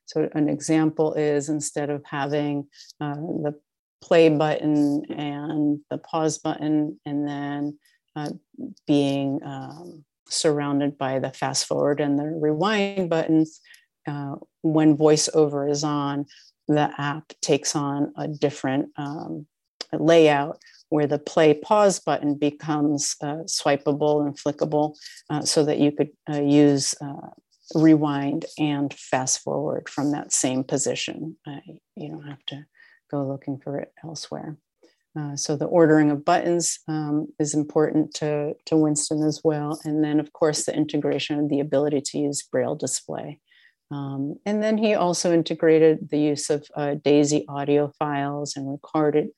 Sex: female